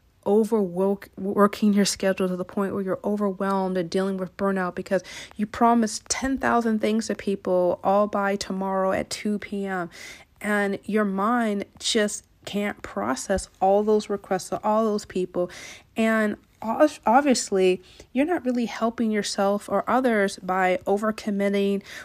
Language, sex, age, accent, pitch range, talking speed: English, female, 40-59, American, 185-210 Hz, 135 wpm